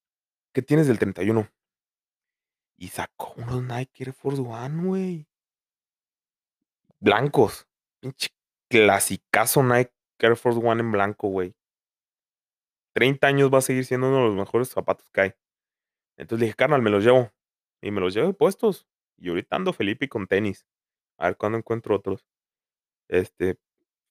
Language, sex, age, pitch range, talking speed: Spanish, male, 30-49, 105-135 Hz, 145 wpm